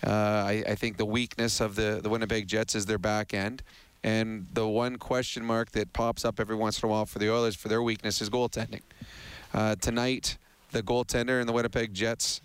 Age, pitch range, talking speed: 30-49, 110-125 Hz, 210 wpm